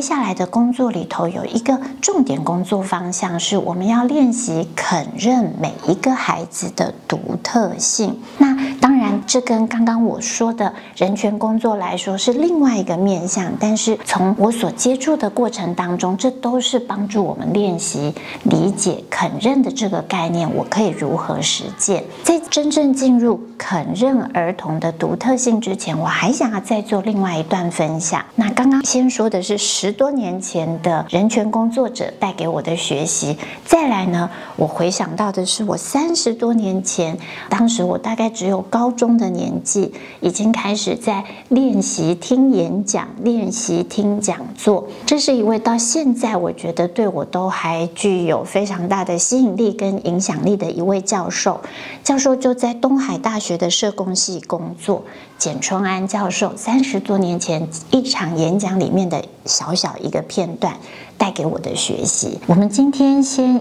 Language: Chinese